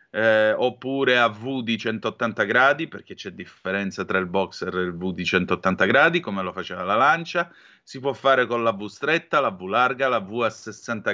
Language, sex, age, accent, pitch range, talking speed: Italian, male, 30-49, native, 100-140 Hz, 205 wpm